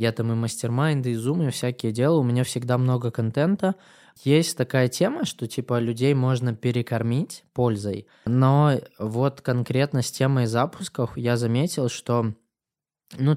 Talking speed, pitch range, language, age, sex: 150 wpm, 115-135 Hz, Russian, 20-39, male